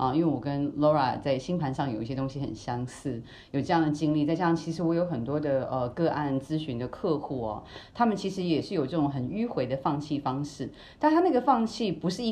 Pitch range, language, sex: 135-200 Hz, Chinese, female